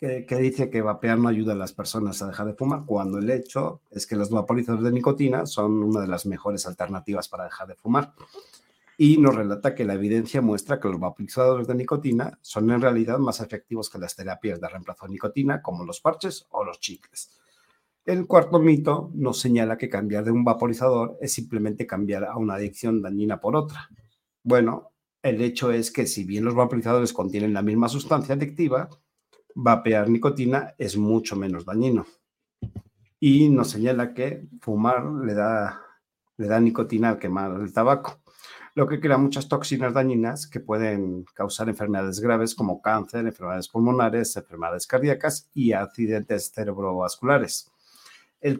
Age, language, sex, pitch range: 50-69, Spanish, male, 105-135 Hz